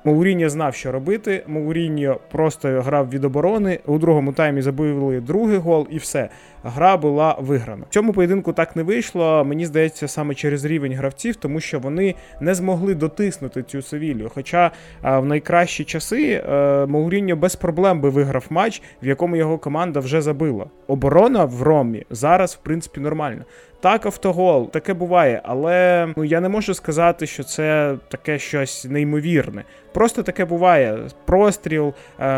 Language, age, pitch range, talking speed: Ukrainian, 20-39, 140-175 Hz, 155 wpm